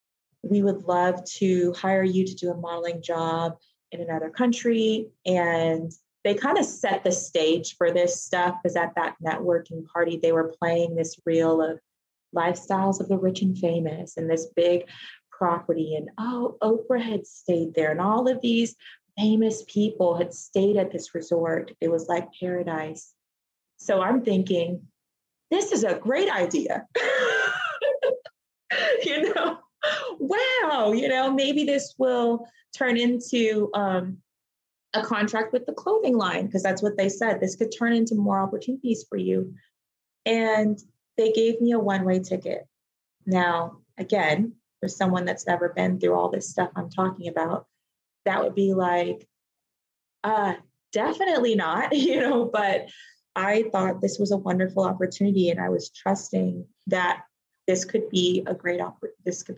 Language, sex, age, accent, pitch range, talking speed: English, female, 20-39, American, 170-225 Hz, 155 wpm